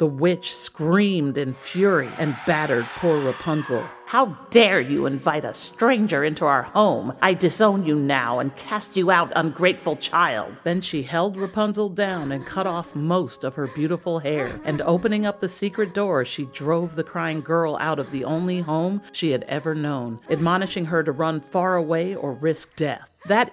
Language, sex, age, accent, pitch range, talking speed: English, female, 50-69, American, 145-180 Hz, 180 wpm